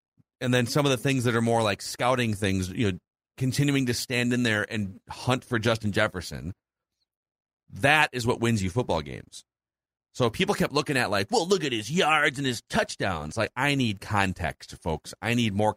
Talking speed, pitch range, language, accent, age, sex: 200 wpm, 95-130 Hz, English, American, 40-59, male